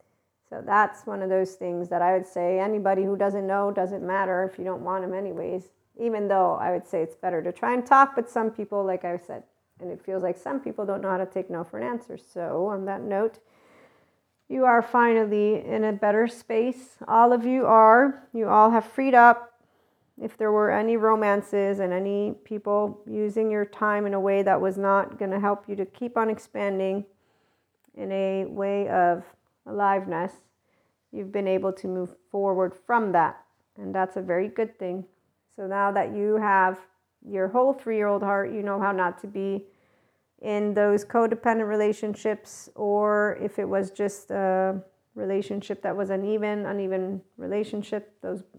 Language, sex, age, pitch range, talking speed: English, female, 40-59, 190-215 Hz, 185 wpm